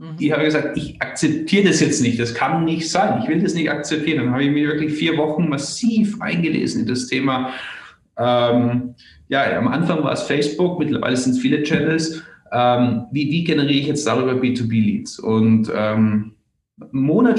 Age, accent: 30-49, German